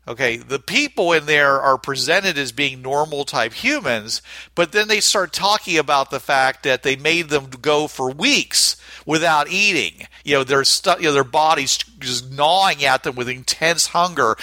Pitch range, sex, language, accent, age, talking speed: 130-165 Hz, male, English, American, 50-69, 185 wpm